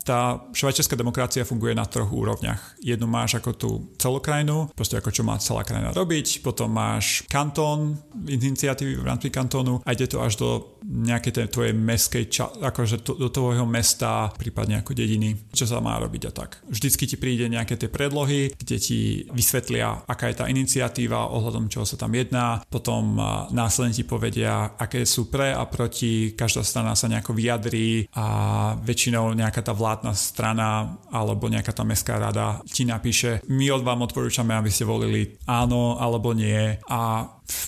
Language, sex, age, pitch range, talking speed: Slovak, male, 30-49, 110-125 Hz, 165 wpm